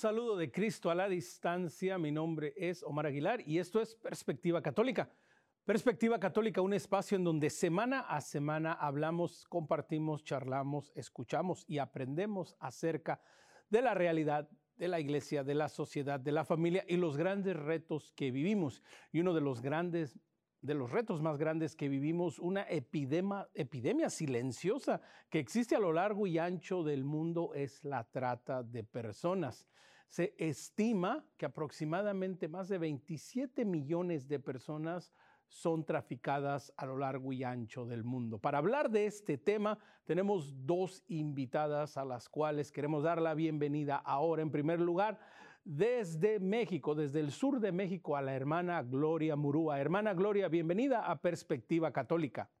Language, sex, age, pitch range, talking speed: Spanish, male, 40-59, 145-190 Hz, 155 wpm